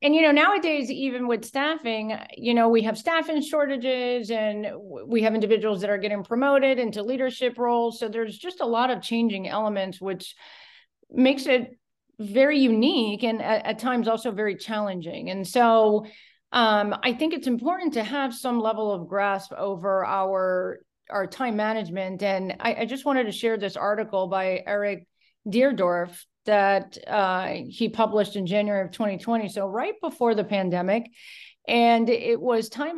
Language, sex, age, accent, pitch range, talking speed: English, female, 40-59, American, 200-245 Hz, 165 wpm